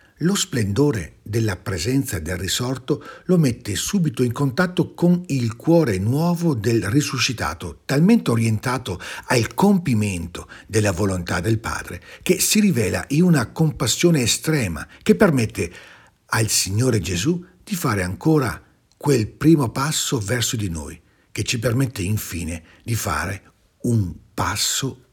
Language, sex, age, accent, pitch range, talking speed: Italian, male, 60-79, native, 95-145 Hz, 130 wpm